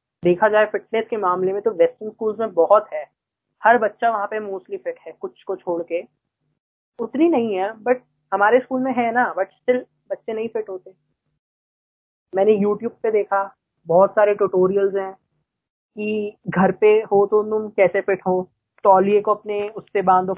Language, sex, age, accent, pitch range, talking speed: Hindi, female, 20-39, native, 190-250 Hz, 175 wpm